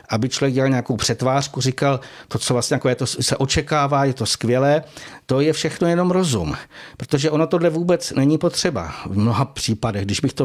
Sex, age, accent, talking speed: male, 60-79, native, 195 wpm